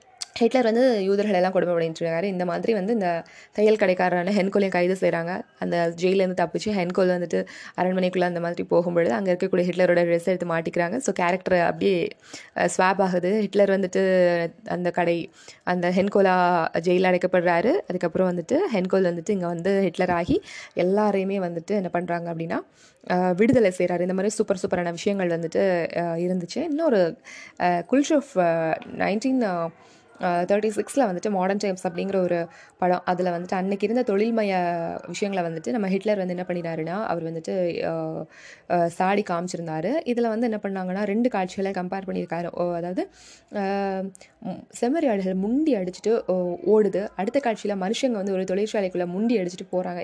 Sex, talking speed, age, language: female, 135 wpm, 20-39, Tamil